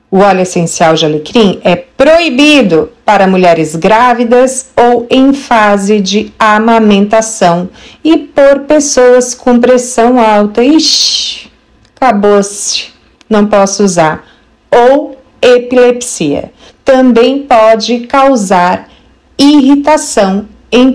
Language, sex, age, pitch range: Portuguese, female, 40-59, 195-265 Hz